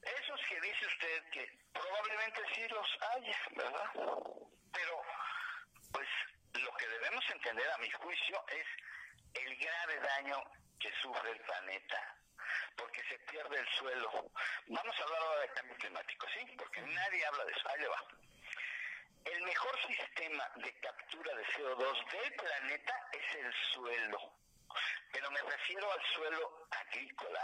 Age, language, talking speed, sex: 50-69, Spanish, 140 wpm, male